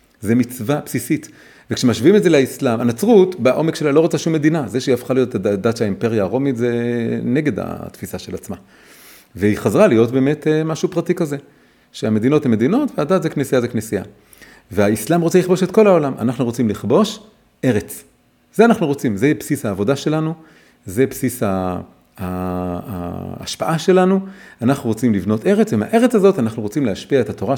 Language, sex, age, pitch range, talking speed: Hebrew, male, 40-59, 105-155 Hz, 165 wpm